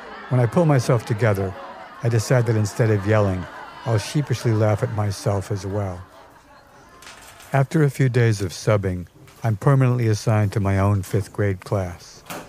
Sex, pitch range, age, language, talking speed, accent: male, 100-125 Hz, 60-79, English, 160 wpm, American